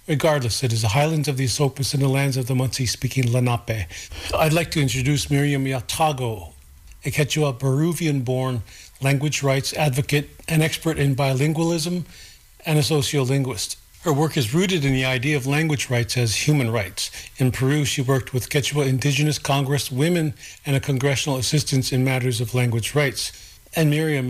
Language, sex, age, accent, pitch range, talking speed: English, male, 40-59, American, 125-150 Hz, 165 wpm